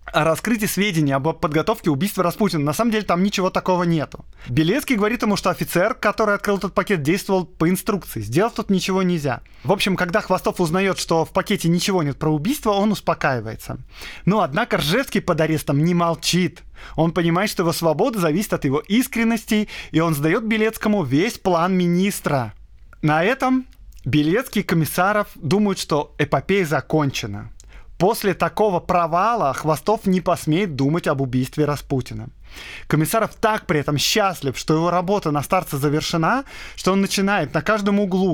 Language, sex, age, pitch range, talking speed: Russian, male, 20-39, 155-205 Hz, 160 wpm